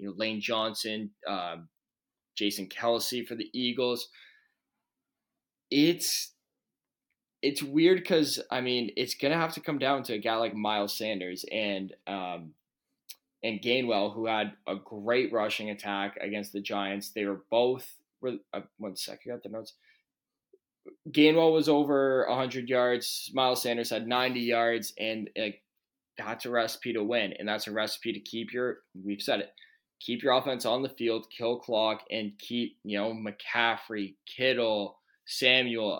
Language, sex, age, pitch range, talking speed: English, male, 10-29, 105-130 Hz, 160 wpm